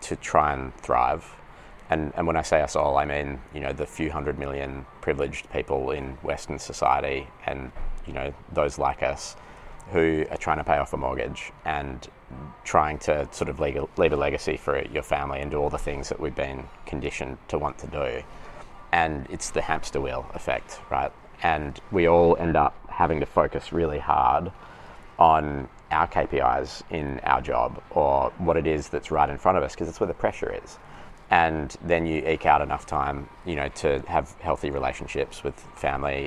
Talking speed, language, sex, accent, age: 195 wpm, English, male, Australian, 20-39